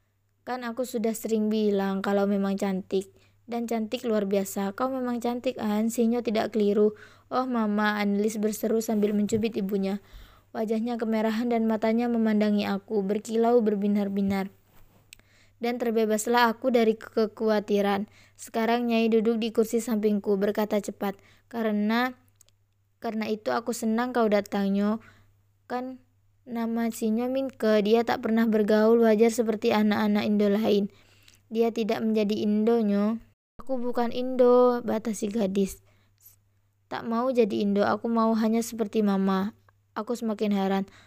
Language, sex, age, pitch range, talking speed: Indonesian, female, 20-39, 205-235 Hz, 135 wpm